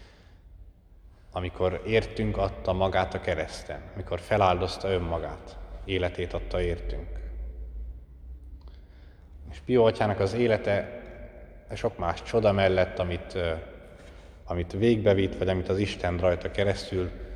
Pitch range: 85-100 Hz